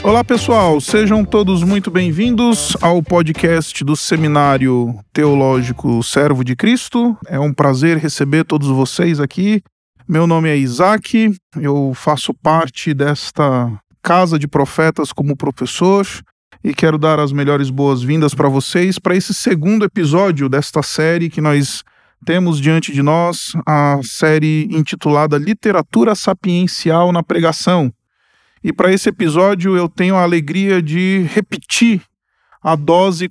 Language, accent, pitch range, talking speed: Portuguese, Brazilian, 140-180 Hz, 130 wpm